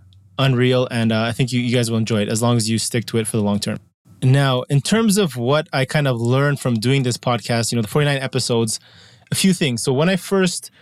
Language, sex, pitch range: English, male, 120-145 Hz